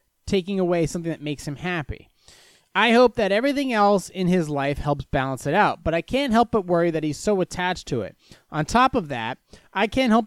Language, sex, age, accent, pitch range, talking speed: English, male, 30-49, American, 155-240 Hz, 220 wpm